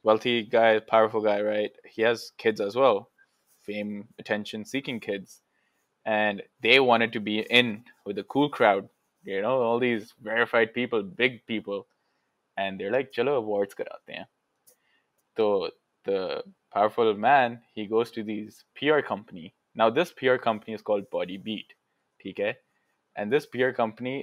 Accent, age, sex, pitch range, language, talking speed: Indian, 20-39, male, 110-160 Hz, English, 145 wpm